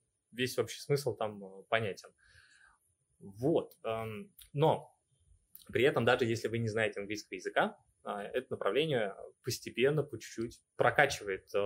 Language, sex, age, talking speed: Russian, male, 20-39, 115 wpm